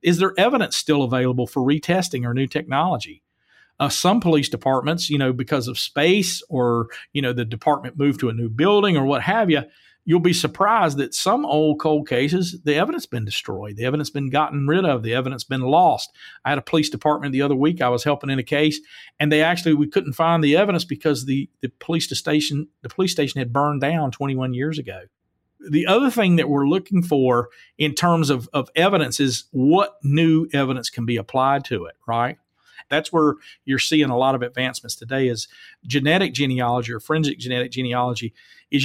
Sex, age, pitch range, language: male, 50-69, 125-155 Hz, English